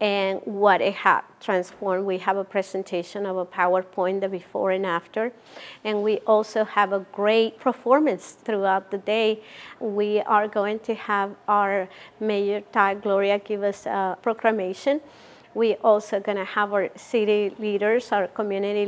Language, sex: English, female